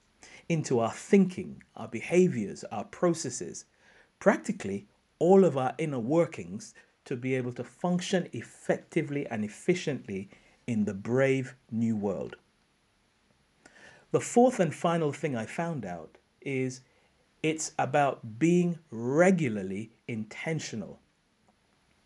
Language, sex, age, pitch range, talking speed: English, male, 50-69, 120-170 Hz, 110 wpm